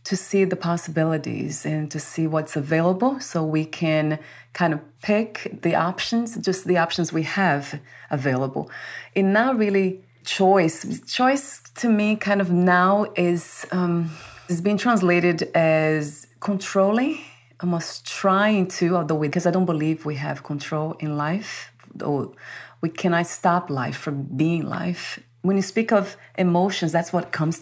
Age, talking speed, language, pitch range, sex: 30-49, 150 wpm, English, 150-185 Hz, female